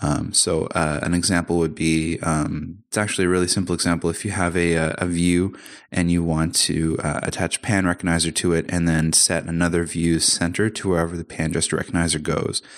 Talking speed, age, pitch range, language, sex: 200 wpm, 20-39, 80-90 Hz, English, male